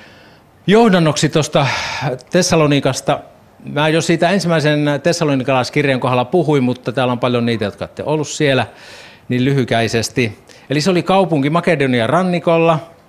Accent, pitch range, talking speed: native, 115-150 Hz, 125 wpm